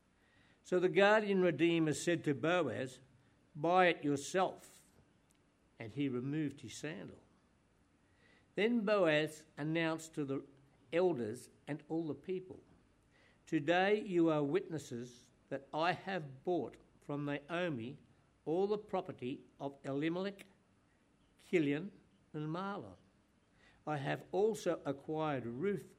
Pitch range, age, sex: 130-170 Hz, 60-79, male